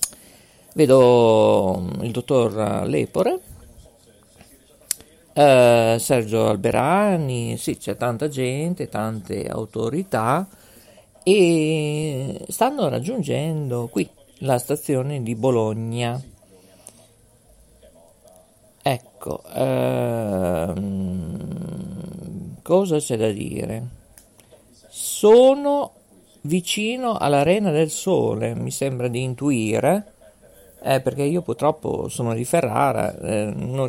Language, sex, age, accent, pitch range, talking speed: Italian, male, 50-69, native, 115-160 Hz, 80 wpm